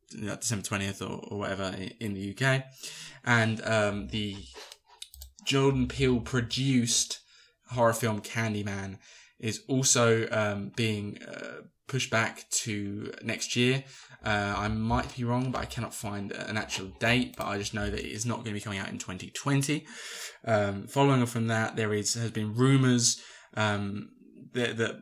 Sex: male